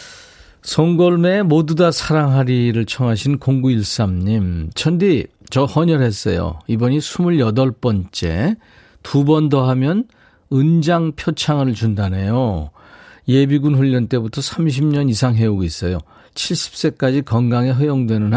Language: Korean